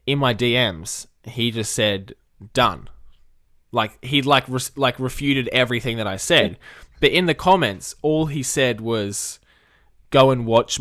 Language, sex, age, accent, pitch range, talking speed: English, male, 10-29, Australian, 105-125 Hz, 155 wpm